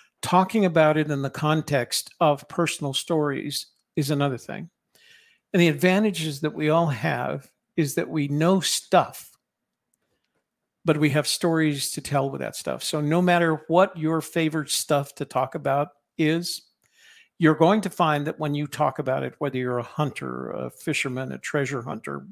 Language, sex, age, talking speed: English, male, 50-69, 170 wpm